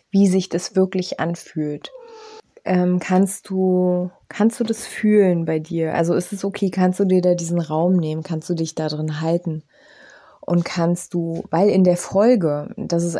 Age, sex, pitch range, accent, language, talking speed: 20-39, female, 170-200 Hz, German, German, 175 wpm